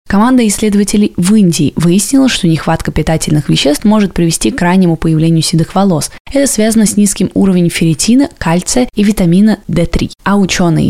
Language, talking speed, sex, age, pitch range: Russian, 155 wpm, female, 20-39, 165-215 Hz